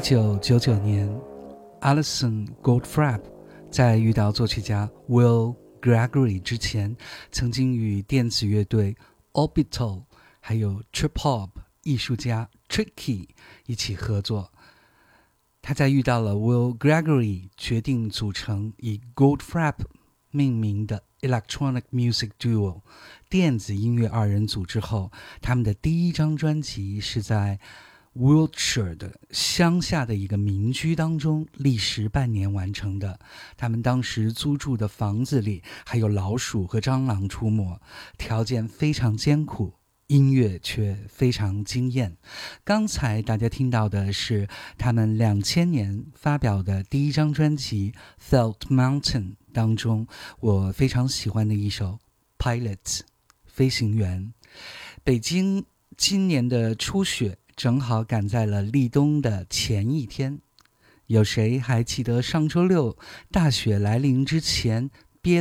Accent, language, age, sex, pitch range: native, Chinese, 50-69, male, 105-135 Hz